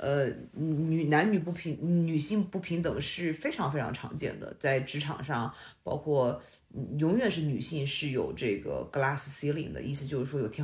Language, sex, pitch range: Chinese, female, 140-175 Hz